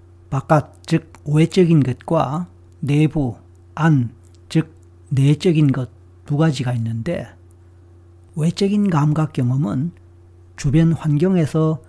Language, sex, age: Korean, male, 40-59